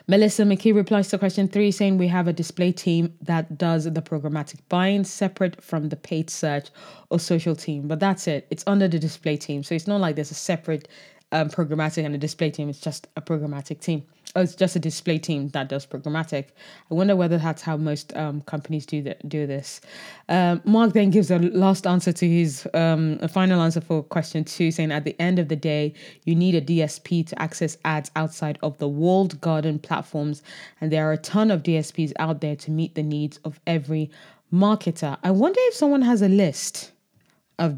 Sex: female